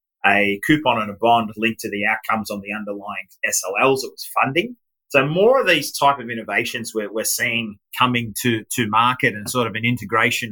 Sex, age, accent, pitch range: male, 30-49, Australian, 110-140 Hz